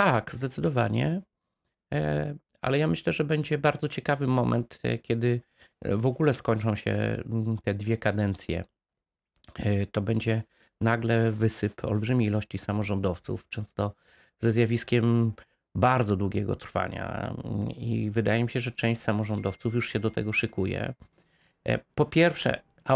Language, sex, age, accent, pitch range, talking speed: Polish, male, 30-49, native, 100-120 Hz, 120 wpm